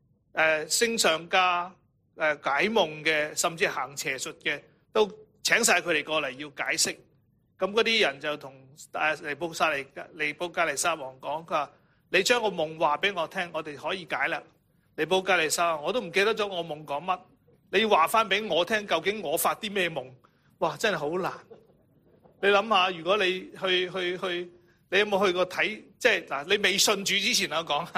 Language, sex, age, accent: English, male, 30-49, Chinese